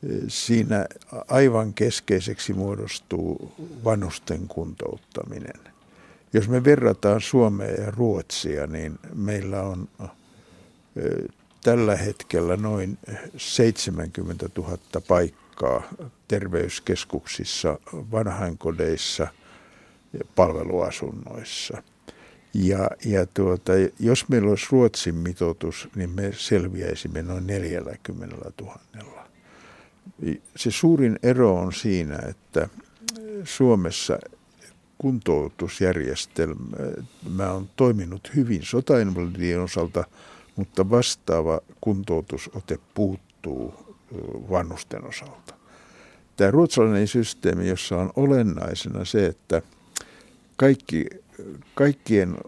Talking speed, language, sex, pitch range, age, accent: 75 wpm, Finnish, male, 90-120 Hz, 60-79, native